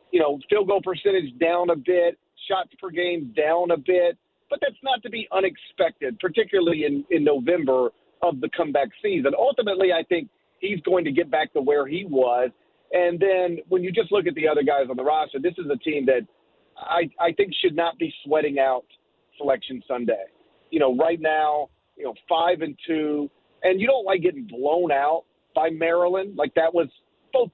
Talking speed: 195 wpm